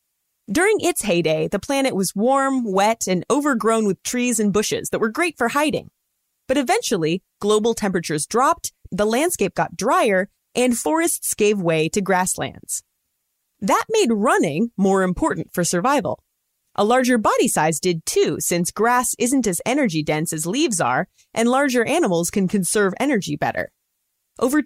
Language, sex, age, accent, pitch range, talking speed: English, female, 30-49, American, 180-260 Hz, 155 wpm